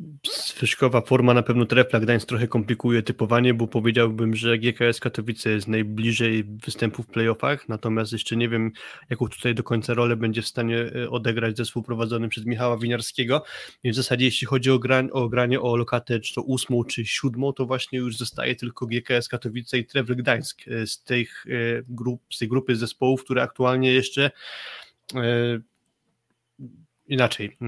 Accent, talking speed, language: native, 165 wpm, Polish